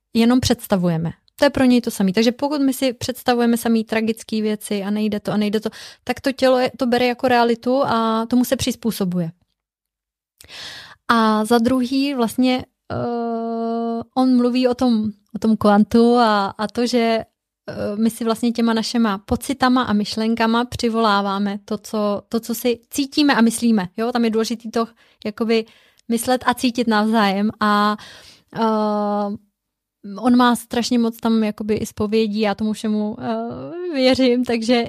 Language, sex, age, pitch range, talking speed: Czech, female, 20-39, 220-245 Hz, 160 wpm